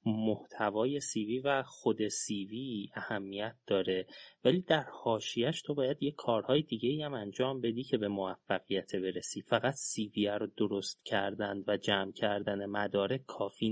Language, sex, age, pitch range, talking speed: Persian, male, 30-49, 105-135 Hz, 140 wpm